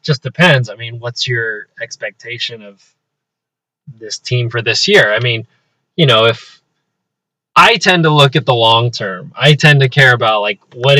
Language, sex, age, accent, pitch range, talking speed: English, male, 20-39, American, 115-140 Hz, 180 wpm